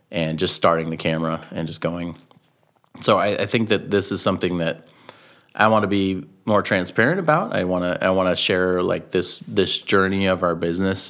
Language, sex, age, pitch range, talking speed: English, male, 30-49, 85-95 Hz, 205 wpm